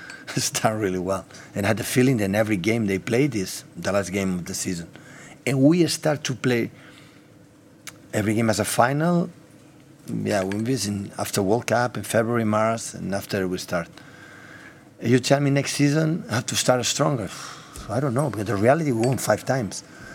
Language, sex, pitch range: English, male, 105-150 Hz